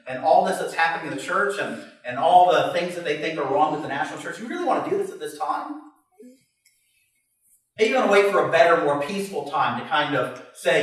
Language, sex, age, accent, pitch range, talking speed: English, male, 40-59, American, 170-245 Hz, 255 wpm